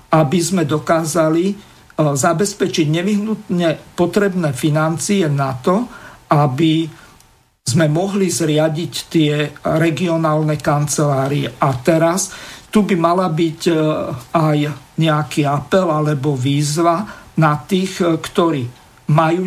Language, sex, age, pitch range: Slovak, male, 50-69, 150-170 Hz